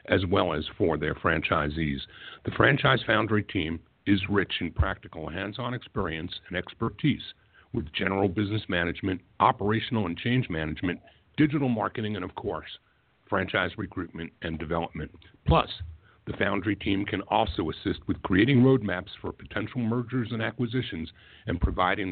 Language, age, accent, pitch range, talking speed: English, 60-79, American, 90-115 Hz, 140 wpm